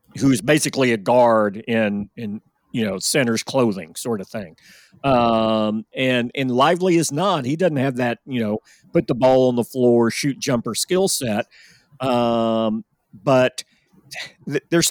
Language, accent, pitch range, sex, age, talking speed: English, American, 115-150 Hz, male, 50-69, 155 wpm